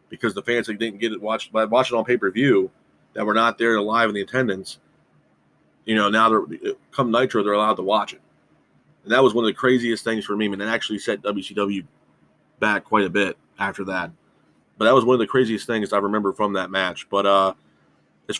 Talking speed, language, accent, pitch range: 220 wpm, English, American, 100-115 Hz